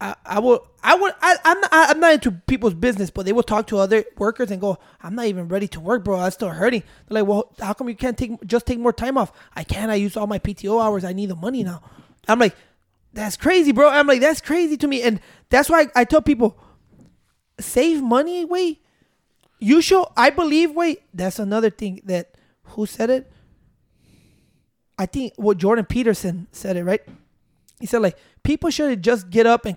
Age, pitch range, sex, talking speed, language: 20-39, 205-270 Hz, male, 220 wpm, English